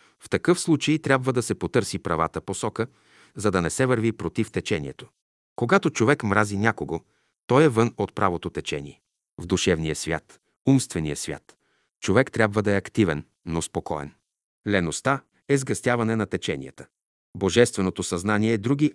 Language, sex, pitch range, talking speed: Bulgarian, male, 95-125 Hz, 150 wpm